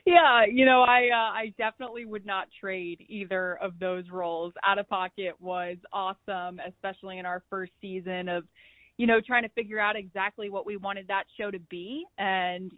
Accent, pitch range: American, 185-220 Hz